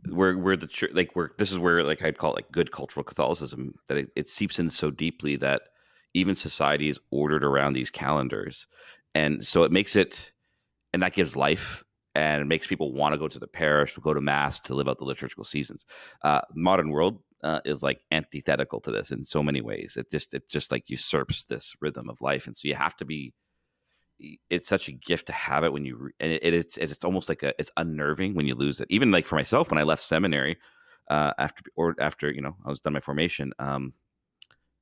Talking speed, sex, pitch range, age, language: 225 wpm, male, 70-80 Hz, 30-49, English